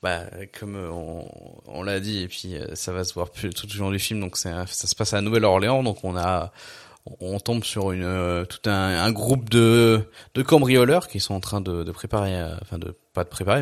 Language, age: French, 20-39